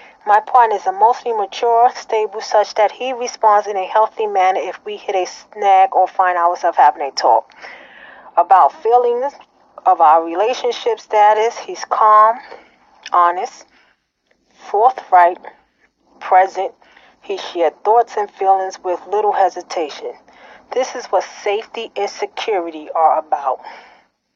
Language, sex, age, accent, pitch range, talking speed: English, female, 30-49, American, 190-255 Hz, 130 wpm